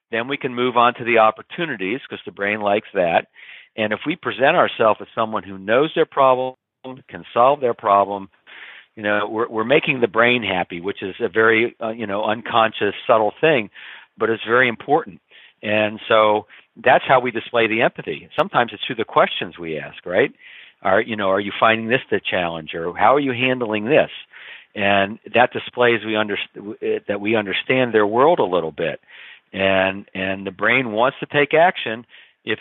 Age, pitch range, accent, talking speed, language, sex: 50-69, 105-125 Hz, American, 190 wpm, English, male